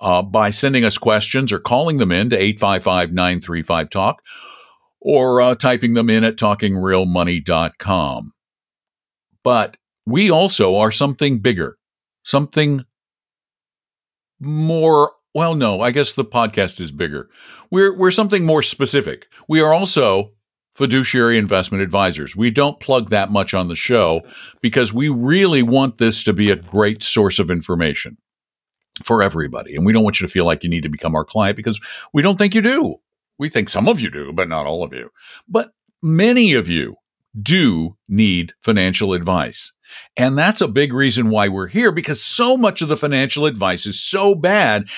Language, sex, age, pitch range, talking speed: English, male, 50-69, 105-170 Hz, 175 wpm